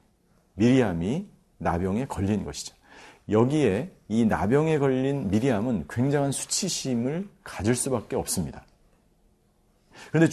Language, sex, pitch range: Korean, male, 110-155 Hz